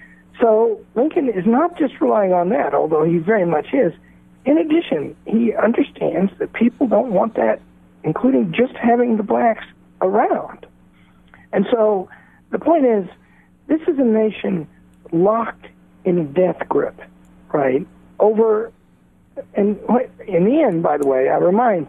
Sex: male